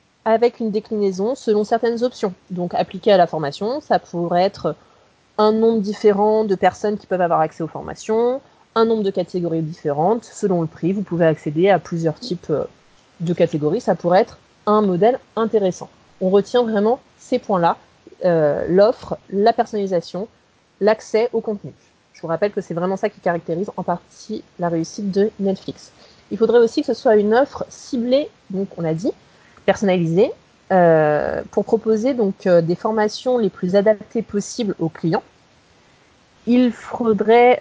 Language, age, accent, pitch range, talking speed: French, 30-49, French, 175-225 Hz, 165 wpm